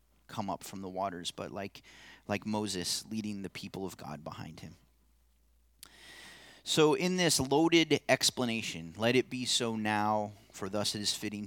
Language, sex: English, male